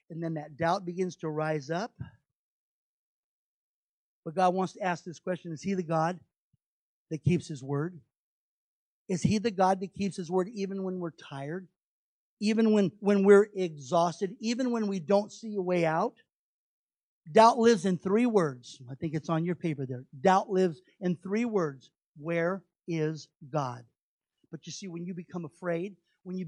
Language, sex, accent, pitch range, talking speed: English, male, American, 165-215 Hz, 175 wpm